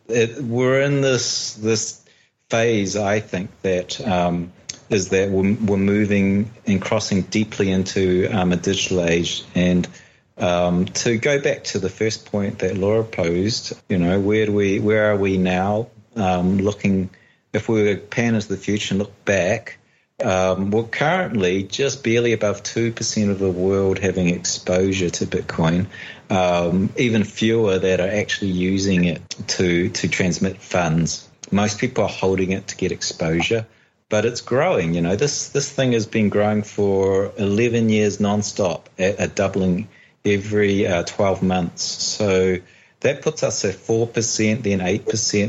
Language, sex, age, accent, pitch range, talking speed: English, male, 30-49, Australian, 95-110 Hz, 155 wpm